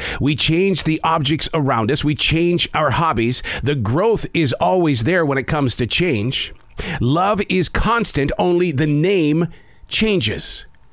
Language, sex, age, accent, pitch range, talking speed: English, male, 50-69, American, 115-175 Hz, 150 wpm